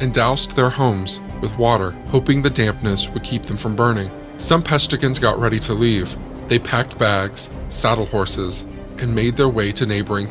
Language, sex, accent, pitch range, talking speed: English, male, American, 95-125 Hz, 180 wpm